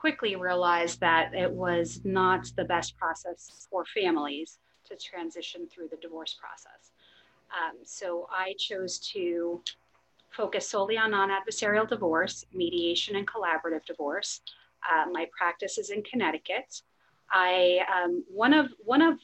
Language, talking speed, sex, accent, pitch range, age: English, 135 wpm, female, American, 175-215 Hz, 30-49